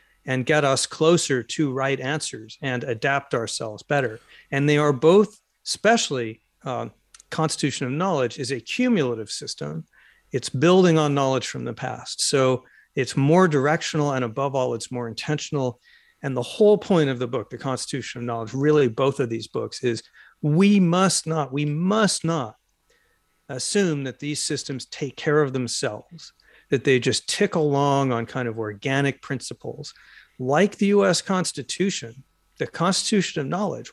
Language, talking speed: English, 160 wpm